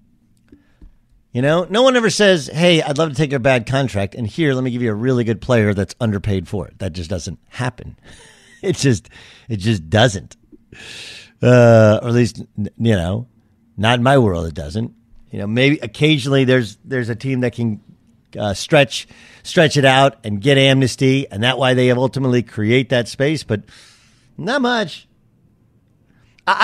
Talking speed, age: 180 wpm, 50-69